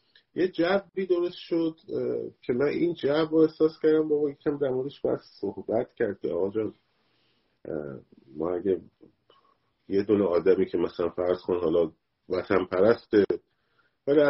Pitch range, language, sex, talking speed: 105-160 Hz, Persian, male, 135 wpm